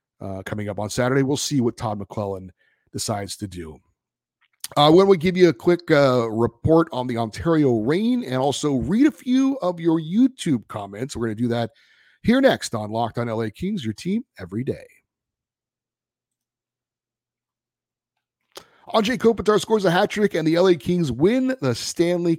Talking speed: 170 wpm